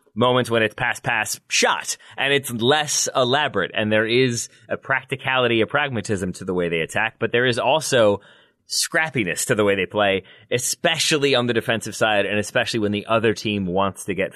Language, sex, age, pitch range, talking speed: English, male, 20-39, 105-135 Hz, 190 wpm